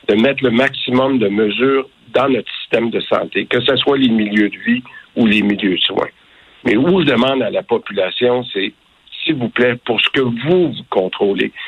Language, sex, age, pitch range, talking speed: French, male, 60-79, 120-145 Hz, 205 wpm